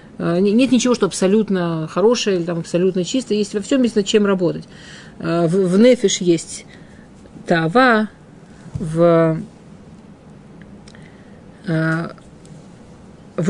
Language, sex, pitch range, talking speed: Russian, female, 180-230 Hz, 95 wpm